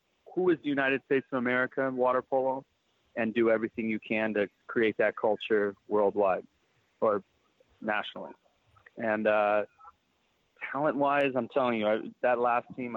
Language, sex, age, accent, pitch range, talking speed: English, male, 30-49, American, 110-130 Hz, 155 wpm